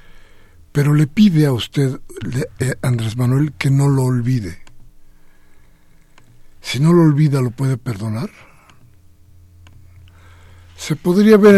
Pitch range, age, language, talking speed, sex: 105-160 Hz, 60-79, Spanish, 120 wpm, male